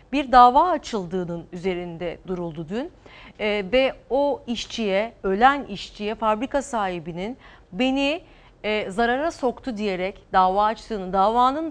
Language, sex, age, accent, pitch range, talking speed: Turkish, female, 40-59, native, 190-250 Hz, 115 wpm